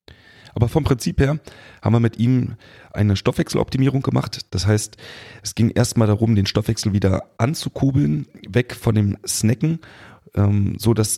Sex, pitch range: male, 100-120 Hz